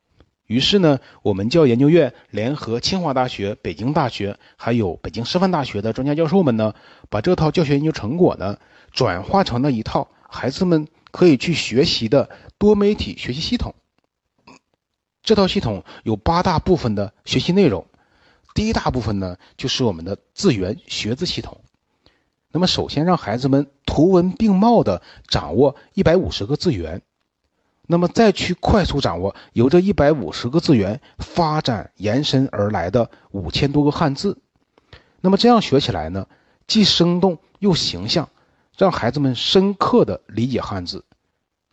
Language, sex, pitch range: Chinese, male, 105-170 Hz